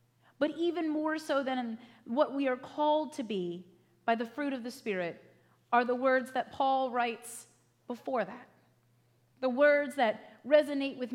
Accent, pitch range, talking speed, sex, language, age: American, 220-280 Hz, 160 wpm, female, English, 30-49